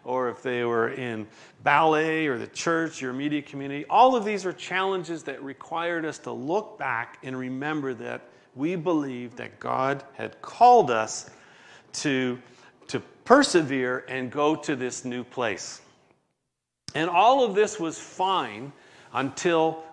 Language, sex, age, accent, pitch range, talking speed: English, male, 40-59, American, 110-140 Hz, 150 wpm